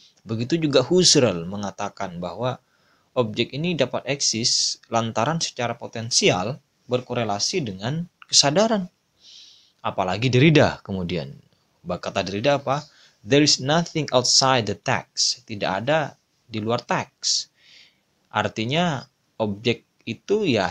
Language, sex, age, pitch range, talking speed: Indonesian, male, 20-39, 100-130 Hz, 105 wpm